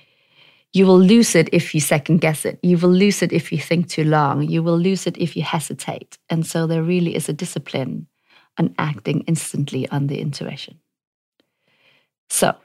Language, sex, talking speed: English, female, 180 wpm